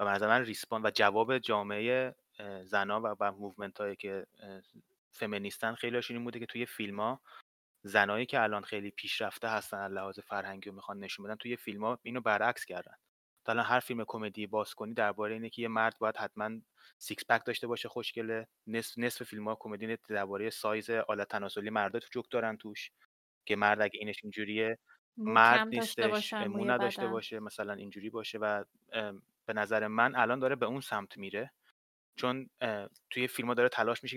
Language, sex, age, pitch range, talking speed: Persian, male, 20-39, 105-120 Hz, 165 wpm